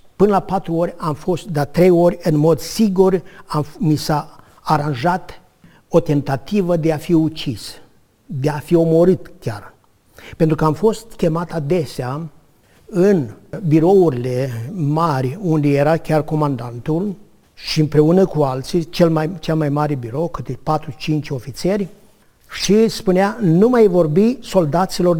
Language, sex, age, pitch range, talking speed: Romanian, male, 50-69, 150-180 Hz, 140 wpm